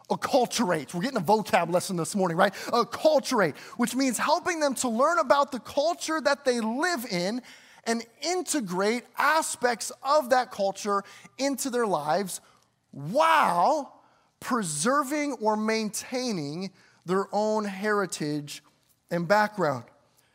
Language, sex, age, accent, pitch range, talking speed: English, male, 20-39, American, 215-270 Hz, 120 wpm